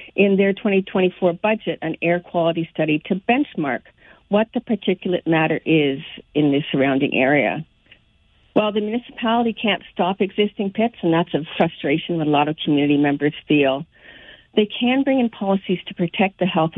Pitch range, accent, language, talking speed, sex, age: 160-200 Hz, American, English, 165 wpm, female, 50-69